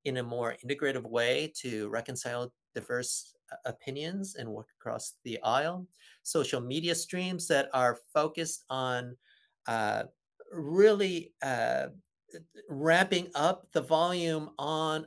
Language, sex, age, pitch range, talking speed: English, male, 50-69, 140-170 Hz, 115 wpm